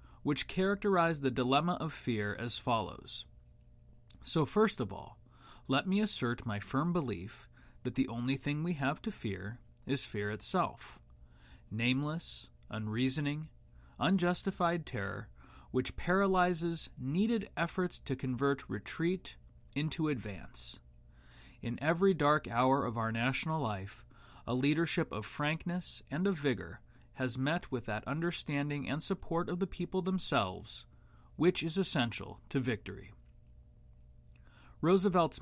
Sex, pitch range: male, 105-165 Hz